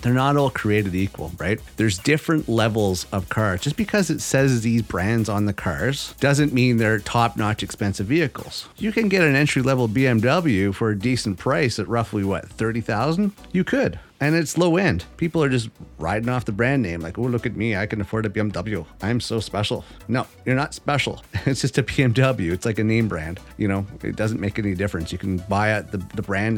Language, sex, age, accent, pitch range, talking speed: English, male, 30-49, American, 100-140 Hz, 215 wpm